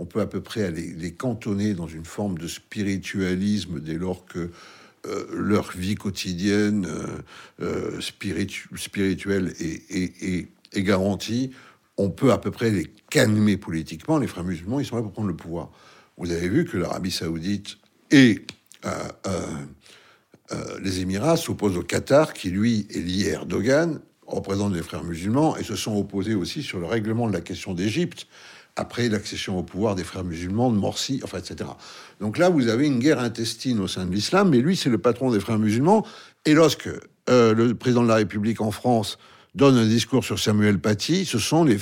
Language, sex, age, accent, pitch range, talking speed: French, male, 60-79, French, 95-125 Hz, 185 wpm